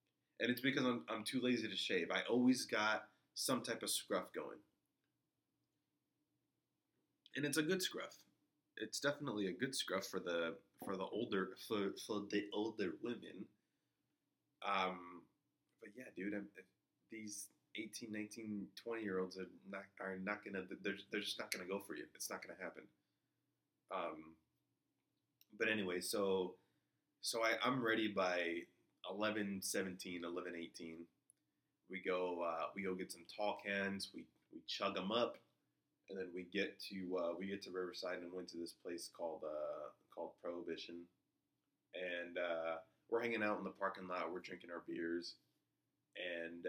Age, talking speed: 20-39, 160 wpm